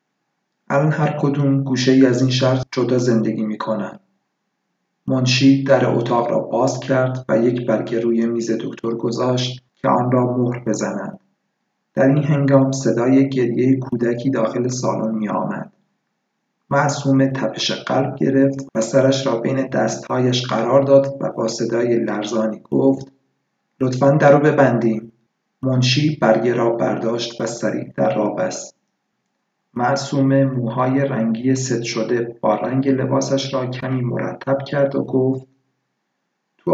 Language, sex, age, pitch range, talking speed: Persian, male, 50-69, 120-135 Hz, 135 wpm